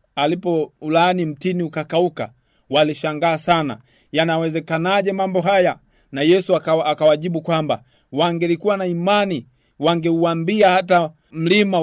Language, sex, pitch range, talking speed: Swahili, male, 140-185 Hz, 100 wpm